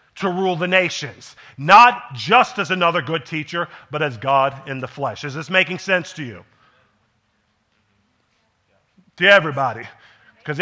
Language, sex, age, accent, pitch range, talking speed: English, male, 40-59, American, 125-150 Hz, 140 wpm